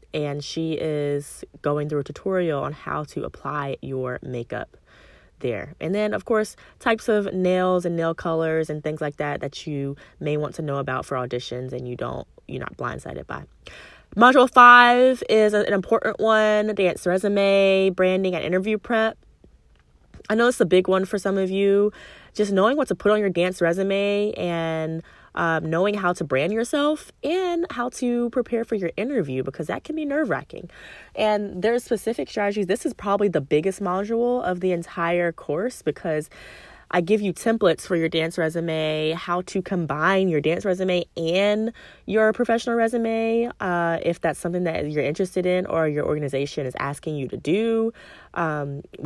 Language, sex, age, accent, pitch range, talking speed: English, female, 20-39, American, 160-215 Hz, 180 wpm